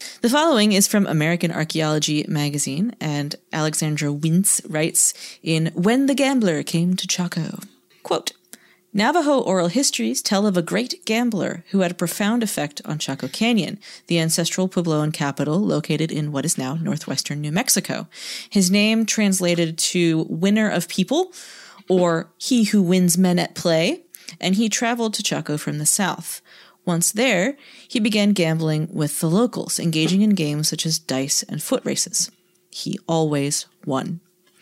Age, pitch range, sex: 30-49, 160-215 Hz, female